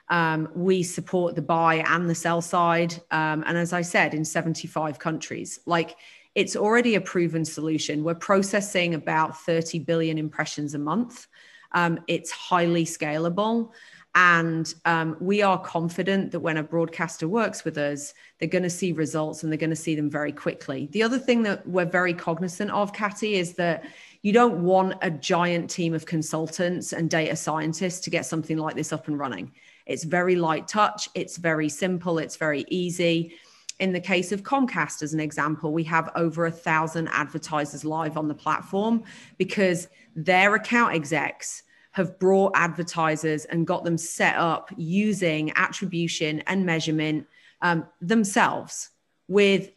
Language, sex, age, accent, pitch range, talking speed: English, female, 40-59, British, 160-185 Hz, 165 wpm